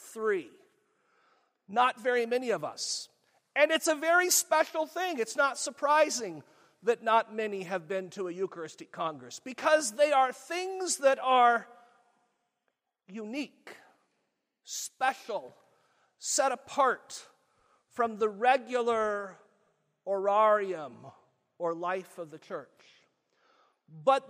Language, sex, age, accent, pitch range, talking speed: English, male, 40-59, American, 210-285 Hz, 110 wpm